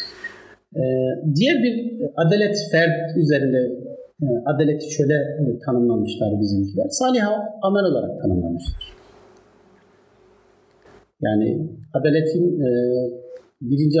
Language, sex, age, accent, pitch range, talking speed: Turkish, male, 50-69, native, 145-210 Hz, 80 wpm